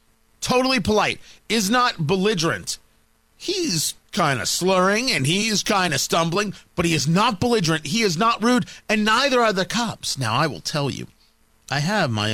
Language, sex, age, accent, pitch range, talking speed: English, male, 40-59, American, 135-200 Hz, 175 wpm